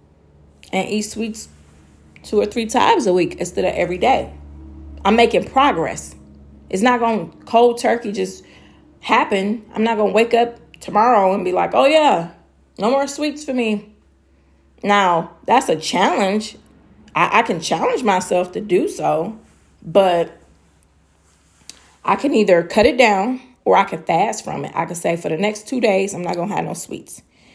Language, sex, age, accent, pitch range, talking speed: English, female, 30-49, American, 165-235 Hz, 175 wpm